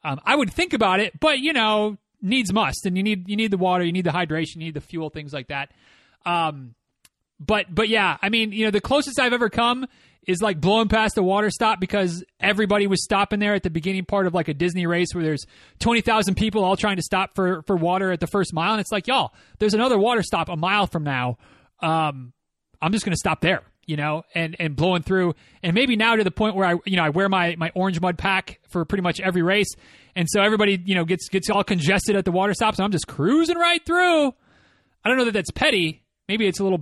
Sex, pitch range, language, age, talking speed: male, 165-210 Hz, English, 30-49, 250 wpm